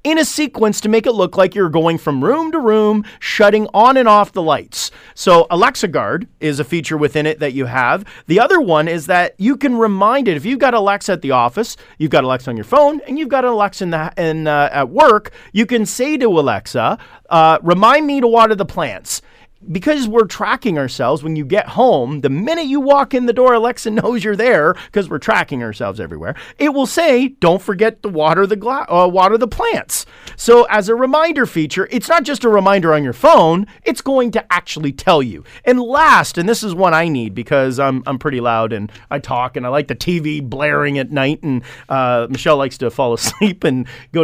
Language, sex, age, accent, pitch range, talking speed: English, male, 40-59, American, 150-235 Hz, 220 wpm